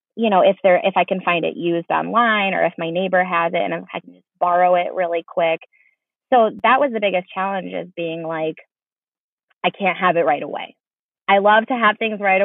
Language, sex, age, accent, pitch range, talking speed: English, female, 20-39, American, 175-220 Hz, 220 wpm